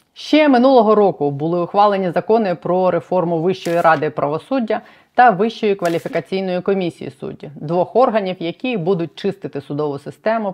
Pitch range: 160-200 Hz